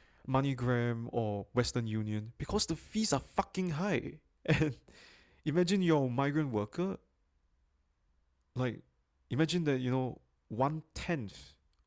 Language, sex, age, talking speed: English, male, 20-39, 110 wpm